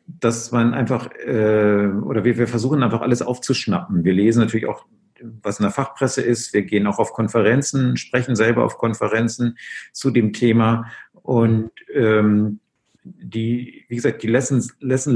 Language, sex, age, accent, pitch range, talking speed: German, male, 50-69, German, 105-125 Hz, 160 wpm